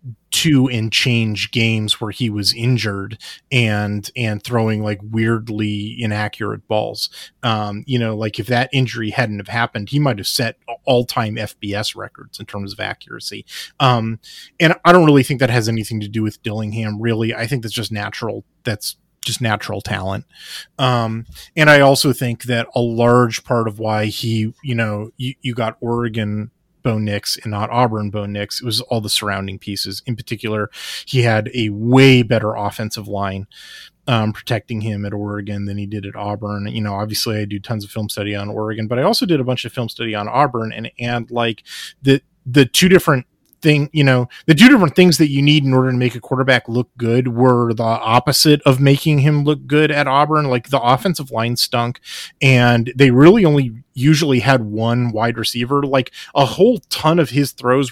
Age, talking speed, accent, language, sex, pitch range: 30-49, 195 wpm, American, English, male, 110-135 Hz